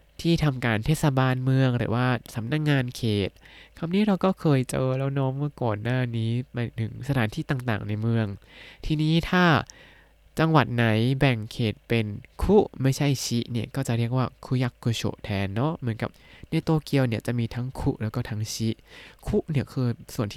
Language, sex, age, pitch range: Thai, male, 20-39, 110-140 Hz